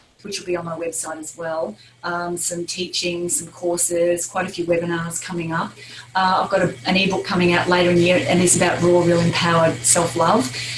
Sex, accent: female, Australian